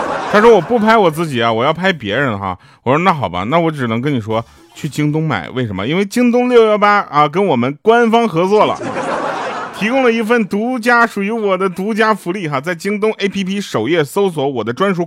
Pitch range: 115-175 Hz